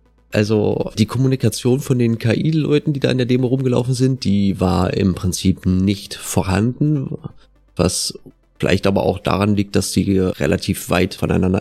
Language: German